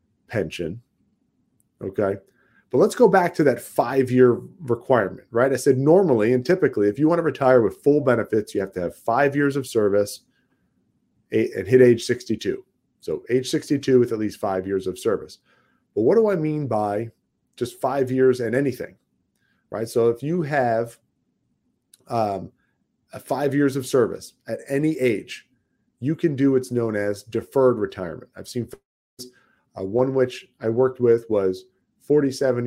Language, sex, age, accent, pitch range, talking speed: English, male, 40-59, American, 110-130 Hz, 160 wpm